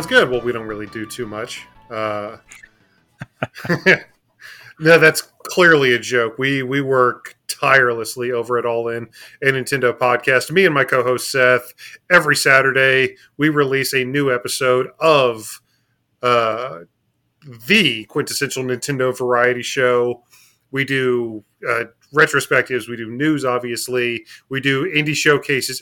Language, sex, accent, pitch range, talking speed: English, male, American, 125-145 Hz, 130 wpm